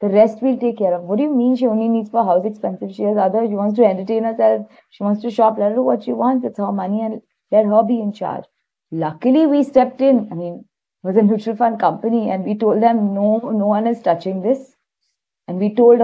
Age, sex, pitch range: 20-39, female, 180-225 Hz